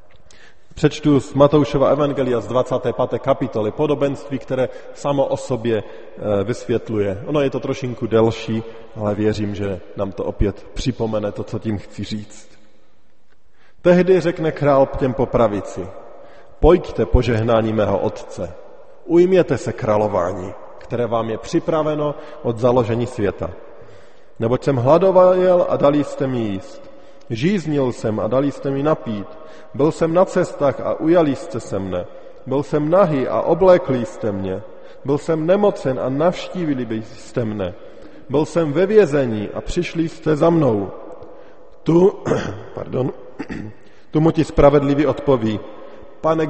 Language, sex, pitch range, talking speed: Slovak, male, 110-160 Hz, 135 wpm